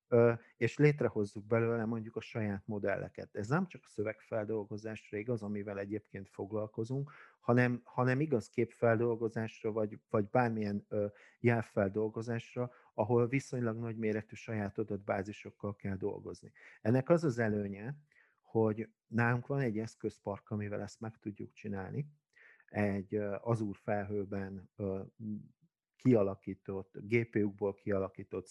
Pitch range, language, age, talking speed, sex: 105-120 Hz, Hungarian, 50-69, 110 wpm, male